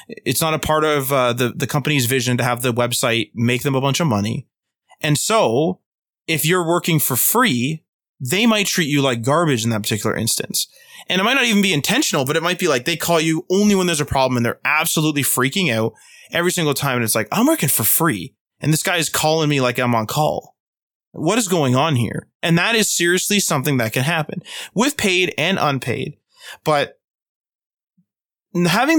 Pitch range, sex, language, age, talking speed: 125-175 Hz, male, English, 20-39, 210 wpm